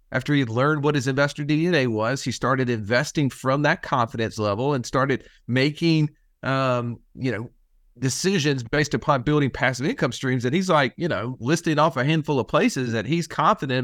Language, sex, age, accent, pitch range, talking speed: English, male, 40-59, American, 130-160 Hz, 180 wpm